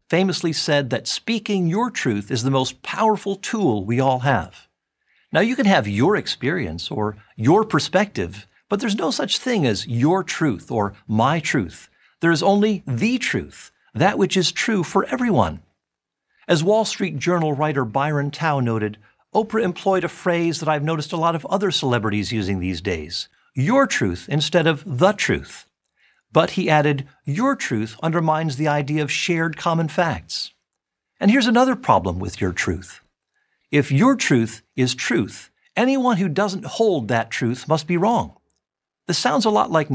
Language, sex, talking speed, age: English, male, 165 wpm, 50-69